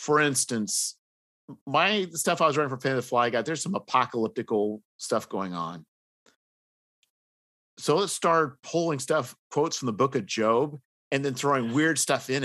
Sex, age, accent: male, 50-69, American